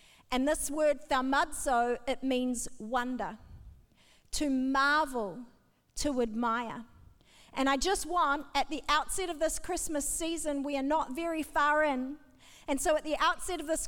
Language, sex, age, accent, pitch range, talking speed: English, female, 40-59, Australian, 270-325 Hz, 150 wpm